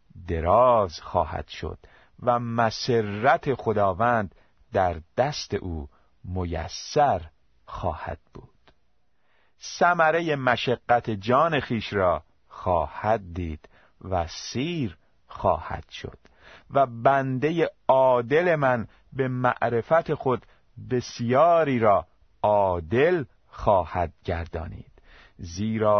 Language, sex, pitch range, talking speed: Persian, male, 95-145 Hz, 85 wpm